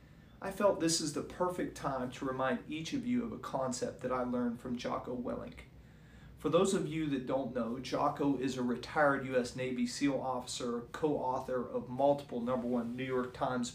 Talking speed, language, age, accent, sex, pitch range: 190 wpm, English, 40-59, American, male, 130-150 Hz